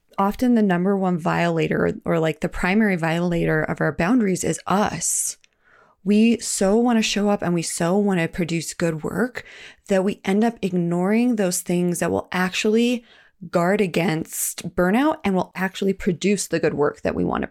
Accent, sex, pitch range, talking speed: American, female, 170-210 Hz, 180 wpm